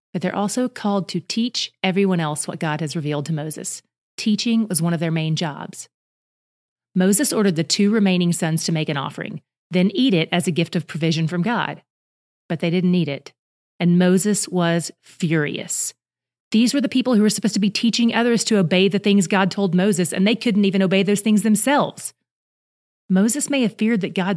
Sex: female